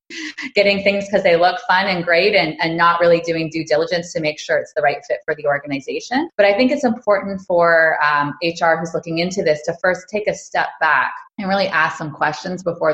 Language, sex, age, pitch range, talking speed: English, female, 20-39, 150-190 Hz, 225 wpm